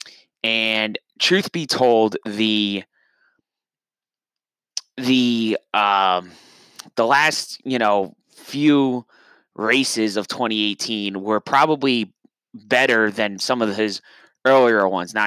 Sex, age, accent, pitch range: male, 20-39, American, 105-125 Hz